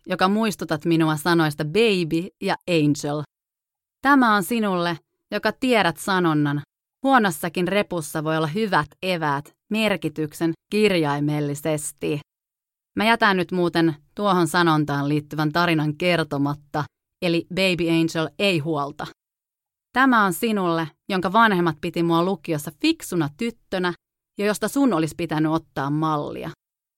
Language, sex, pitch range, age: Finnish, female, 155-210 Hz, 30-49